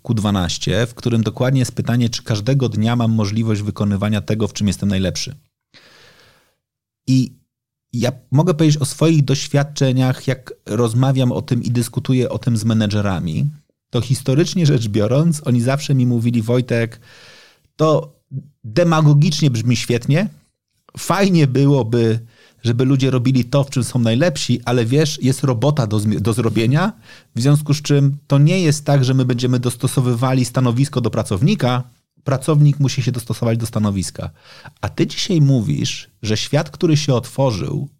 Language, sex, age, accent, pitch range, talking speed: Polish, male, 30-49, native, 115-140 Hz, 150 wpm